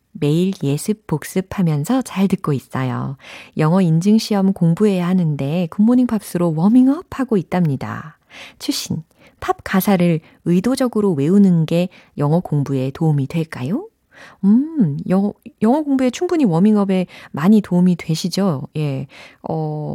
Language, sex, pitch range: Korean, female, 150-215 Hz